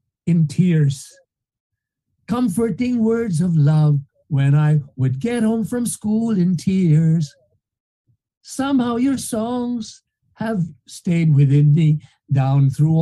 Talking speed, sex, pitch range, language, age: 110 wpm, male, 140-185 Hz, Filipino, 50-69